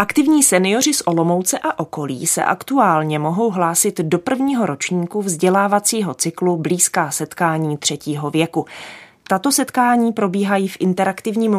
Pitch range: 155-205 Hz